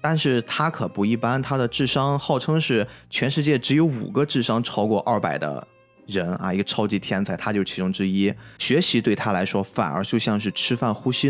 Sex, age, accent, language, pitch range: male, 20-39, native, Chinese, 105-135 Hz